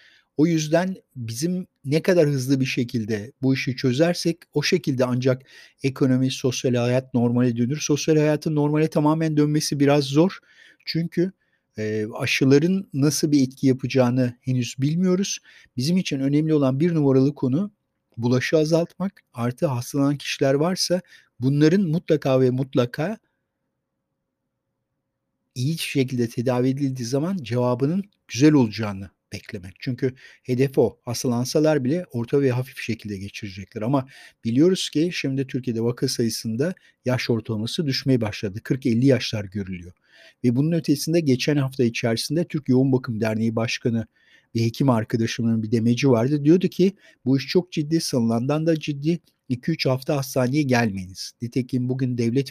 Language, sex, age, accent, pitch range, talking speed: Turkish, male, 50-69, native, 120-155 Hz, 135 wpm